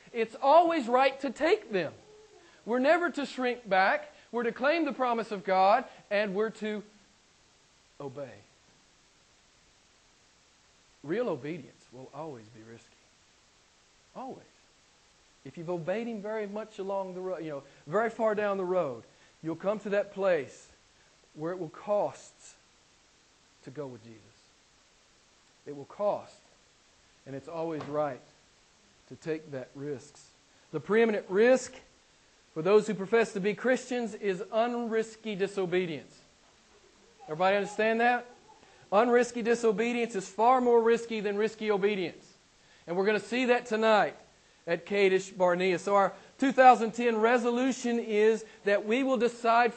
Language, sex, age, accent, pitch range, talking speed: English, male, 40-59, American, 190-240 Hz, 135 wpm